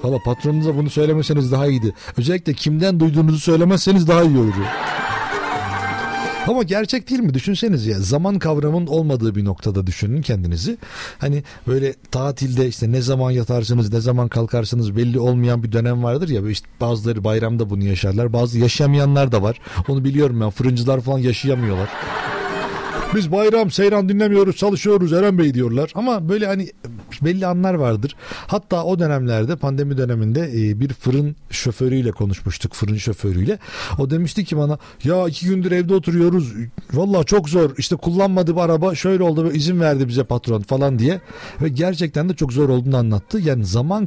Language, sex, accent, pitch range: Turkish, male, native, 120-175 Hz